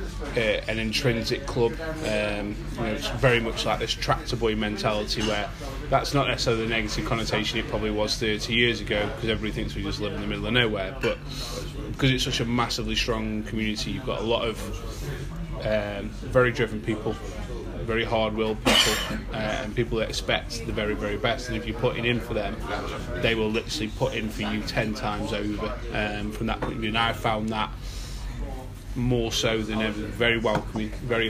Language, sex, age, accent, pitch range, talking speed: English, male, 20-39, British, 105-125 Hz, 190 wpm